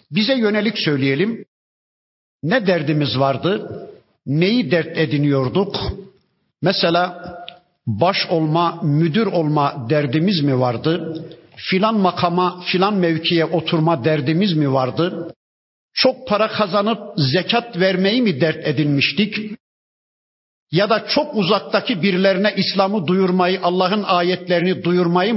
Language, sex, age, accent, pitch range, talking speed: Turkish, male, 50-69, native, 165-200 Hz, 100 wpm